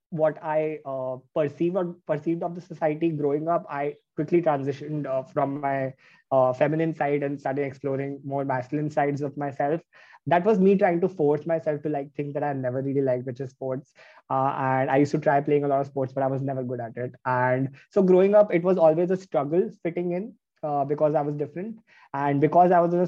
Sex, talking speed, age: male, 225 wpm, 20-39